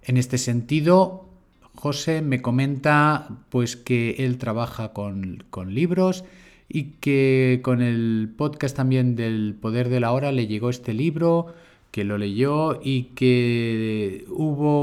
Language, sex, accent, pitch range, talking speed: Spanish, male, Spanish, 115-145 Hz, 140 wpm